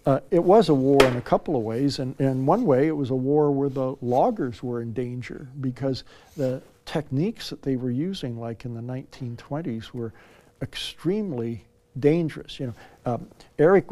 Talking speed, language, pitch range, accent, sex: 180 wpm, English, 120-145 Hz, American, male